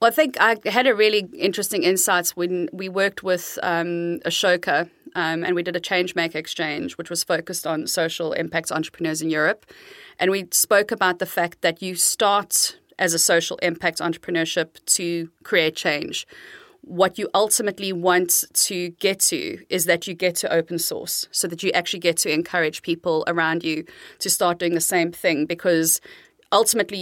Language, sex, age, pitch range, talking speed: English, female, 30-49, 165-195 Hz, 180 wpm